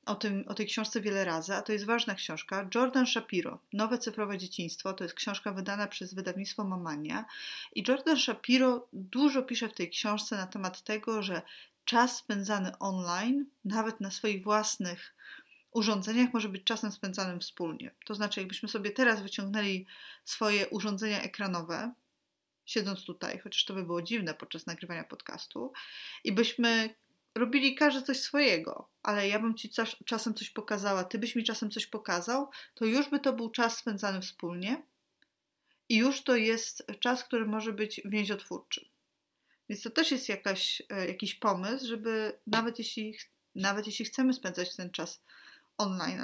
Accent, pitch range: native, 195-240 Hz